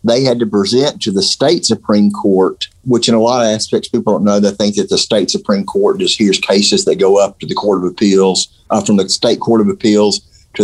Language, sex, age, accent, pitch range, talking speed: English, male, 50-69, American, 100-130 Hz, 250 wpm